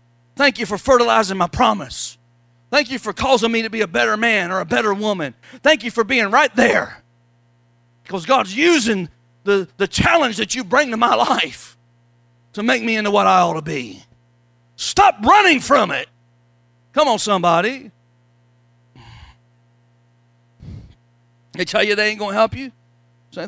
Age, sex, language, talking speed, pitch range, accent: 40-59, male, English, 165 wpm, 115-195 Hz, American